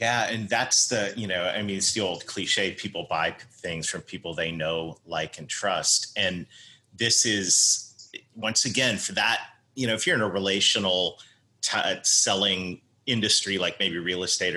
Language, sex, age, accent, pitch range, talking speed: English, male, 30-49, American, 100-120 Hz, 175 wpm